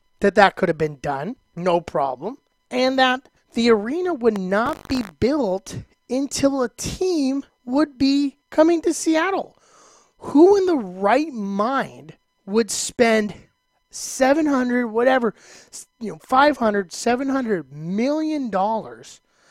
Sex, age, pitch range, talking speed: male, 30-49, 200-265 Hz, 120 wpm